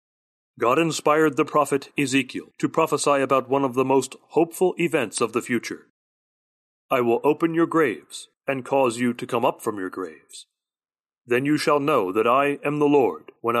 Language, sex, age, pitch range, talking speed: English, male, 40-59, 125-150 Hz, 180 wpm